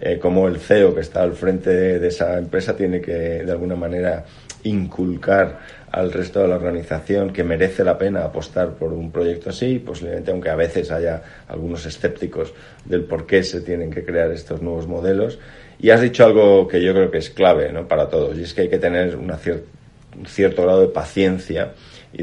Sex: male